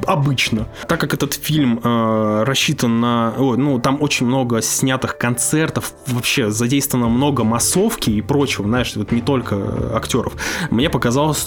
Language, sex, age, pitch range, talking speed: Russian, male, 20-39, 110-135 Hz, 140 wpm